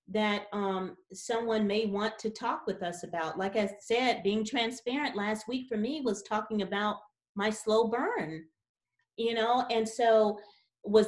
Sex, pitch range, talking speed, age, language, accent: female, 205-255 Hz, 160 wpm, 40-59, English, American